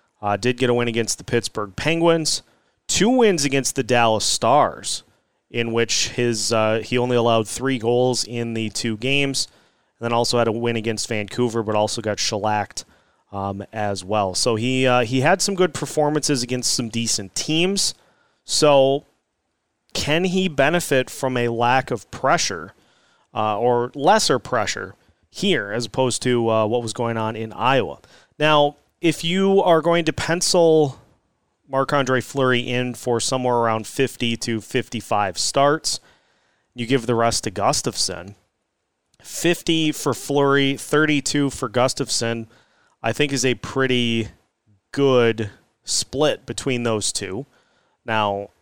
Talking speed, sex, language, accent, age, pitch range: 145 wpm, male, English, American, 30-49, 115-140 Hz